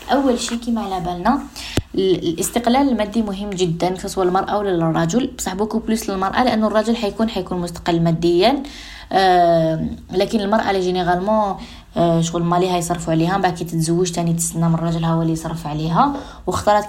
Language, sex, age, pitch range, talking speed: Arabic, female, 20-39, 170-220 Hz, 160 wpm